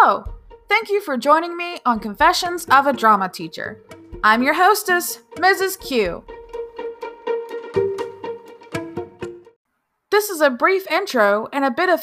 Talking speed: 130 wpm